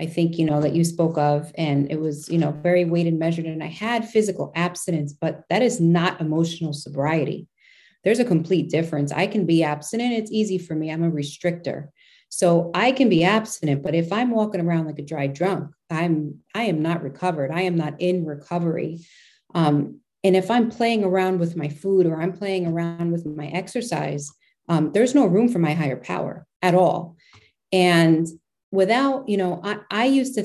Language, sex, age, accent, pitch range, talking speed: English, female, 30-49, American, 160-185 Hz, 195 wpm